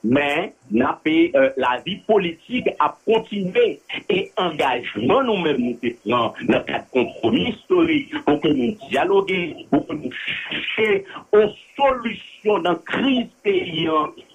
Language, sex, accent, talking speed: English, male, French, 125 wpm